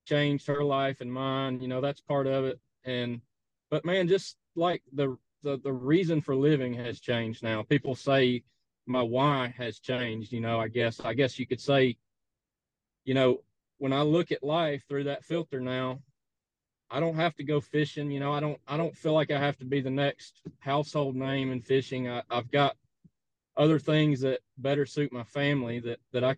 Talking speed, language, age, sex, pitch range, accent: 200 wpm, English, 30-49, male, 125-150 Hz, American